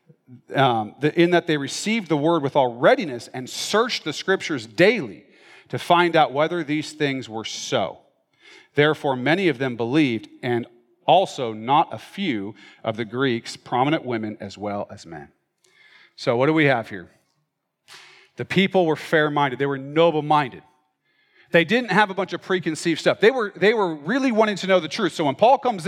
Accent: American